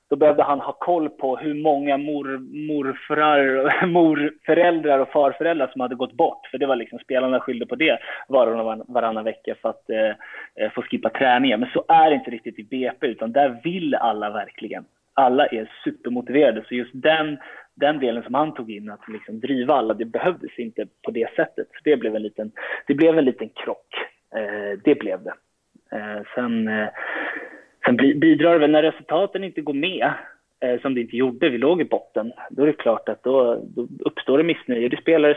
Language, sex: Swedish, male